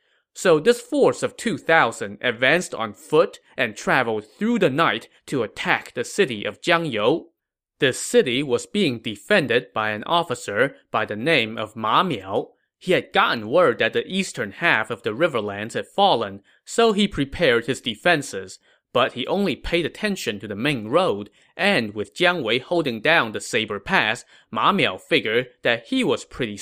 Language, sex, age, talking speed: English, male, 20-39, 170 wpm